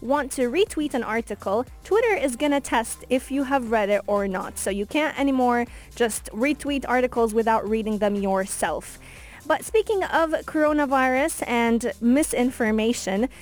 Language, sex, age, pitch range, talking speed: English, female, 20-39, 220-275 Hz, 150 wpm